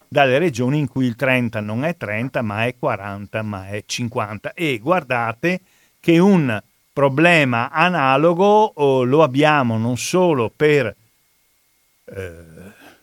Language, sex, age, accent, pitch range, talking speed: Italian, male, 50-69, native, 120-160 Hz, 125 wpm